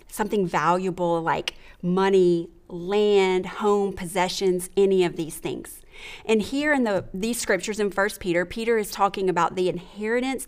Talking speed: 145 wpm